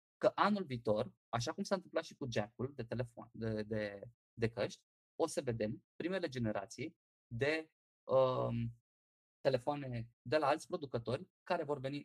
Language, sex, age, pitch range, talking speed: Romanian, male, 20-39, 110-150 Hz, 155 wpm